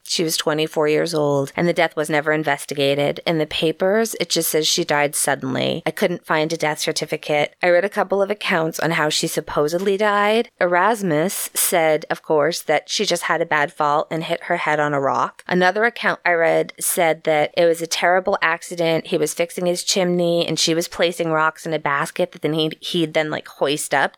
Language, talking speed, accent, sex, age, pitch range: English, 215 wpm, American, female, 20-39, 155-185 Hz